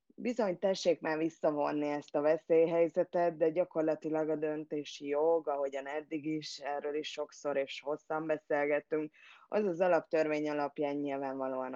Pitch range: 140-165 Hz